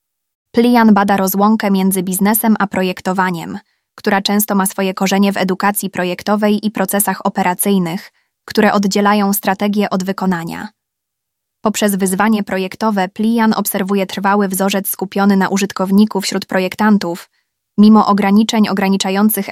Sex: female